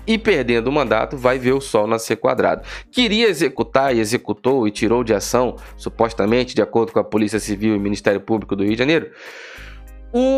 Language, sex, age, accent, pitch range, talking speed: Portuguese, male, 20-39, Brazilian, 110-140 Hz, 190 wpm